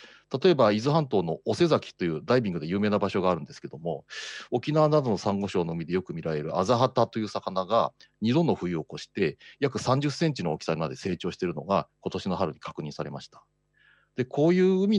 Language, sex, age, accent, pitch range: Japanese, male, 40-59, native, 95-155 Hz